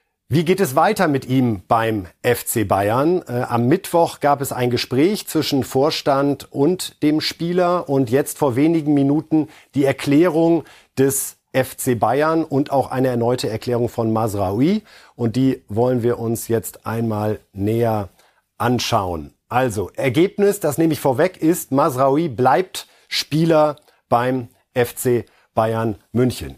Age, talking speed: 50-69, 140 wpm